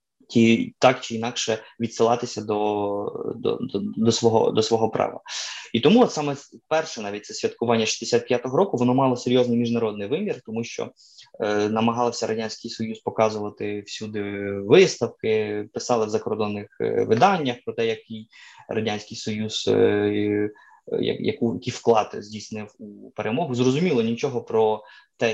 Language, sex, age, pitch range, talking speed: Ukrainian, male, 20-39, 105-120 Hz, 135 wpm